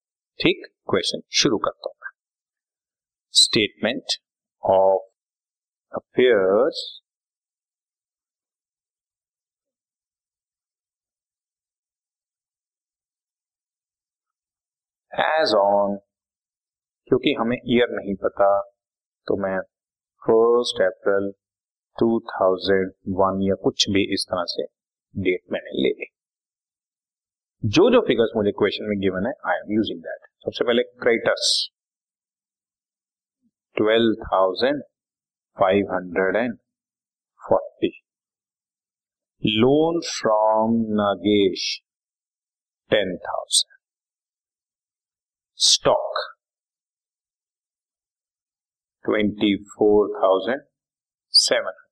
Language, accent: Hindi, native